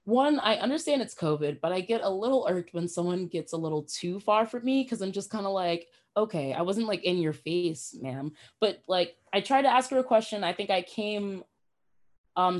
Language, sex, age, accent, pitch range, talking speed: English, female, 20-39, American, 160-215 Hz, 230 wpm